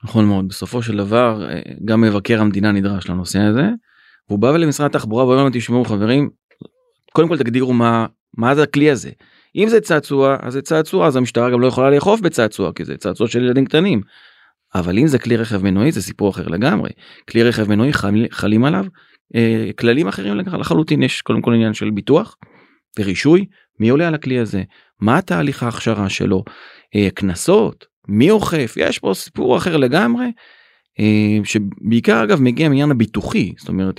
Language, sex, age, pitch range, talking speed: Hebrew, male, 30-49, 105-145 Hz, 170 wpm